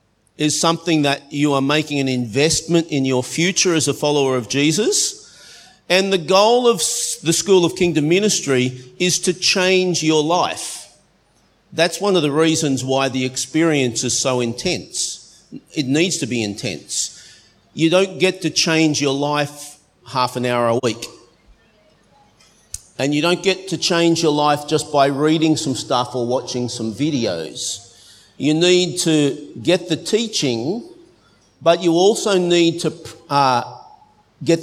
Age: 50-69